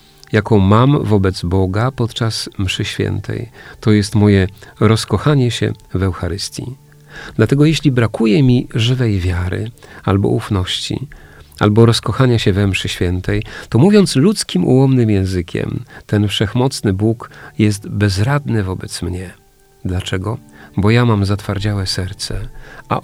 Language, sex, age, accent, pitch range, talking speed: Polish, male, 40-59, native, 100-125 Hz, 120 wpm